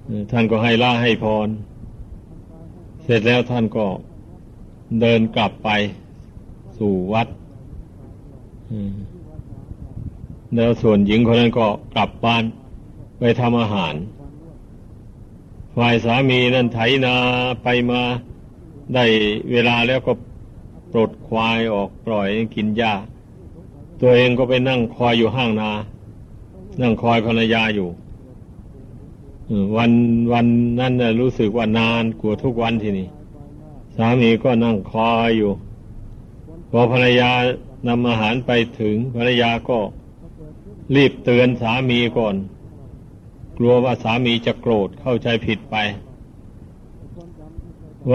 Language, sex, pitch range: Thai, male, 110-125 Hz